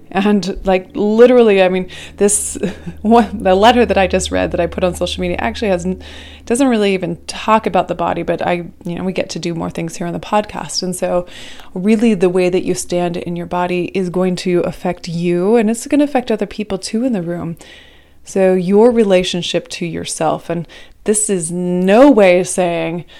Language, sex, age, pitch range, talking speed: English, female, 20-39, 175-215 Hz, 205 wpm